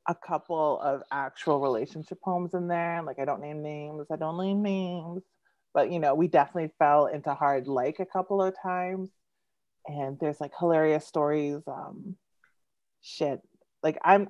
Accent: American